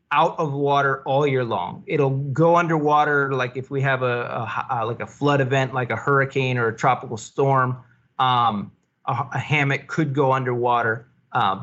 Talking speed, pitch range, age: 180 wpm, 130-160 Hz, 30-49